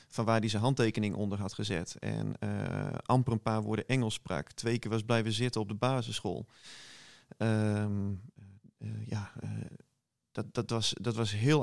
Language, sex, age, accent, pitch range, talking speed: Dutch, male, 40-59, Dutch, 110-130 Hz, 175 wpm